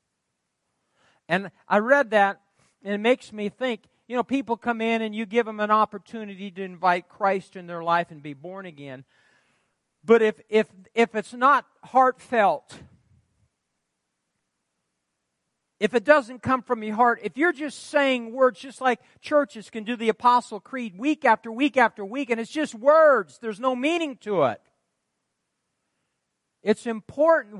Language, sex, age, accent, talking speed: English, male, 50-69, American, 155 wpm